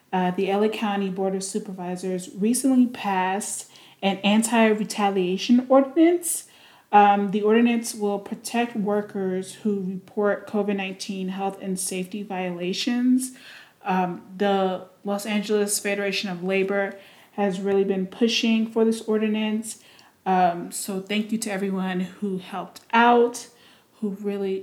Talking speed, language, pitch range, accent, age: 120 wpm, English, 190-215 Hz, American, 30-49